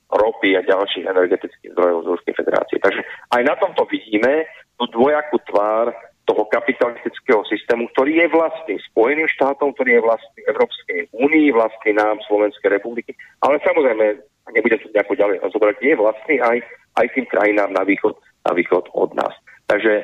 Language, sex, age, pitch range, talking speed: English, male, 40-59, 105-140 Hz, 155 wpm